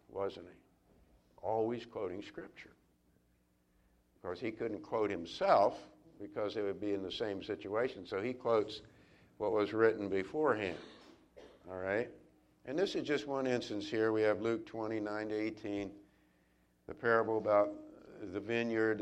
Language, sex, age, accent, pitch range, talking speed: English, male, 60-79, American, 90-105 Hz, 145 wpm